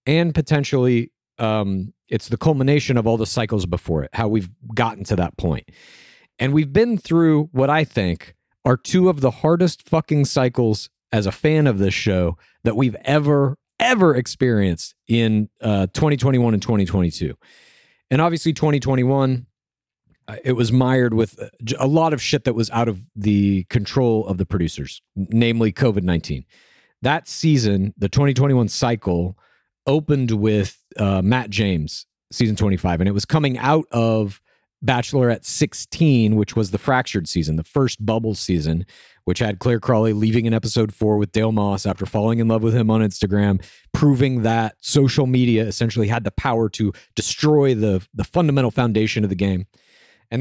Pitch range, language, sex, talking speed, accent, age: 105-135 Hz, English, male, 165 wpm, American, 40-59